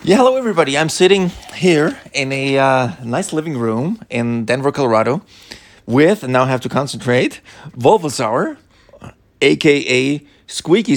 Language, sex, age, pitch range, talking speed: English, male, 30-49, 120-150 Hz, 135 wpm